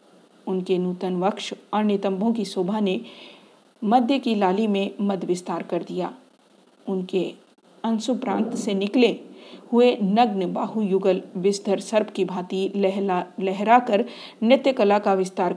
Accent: native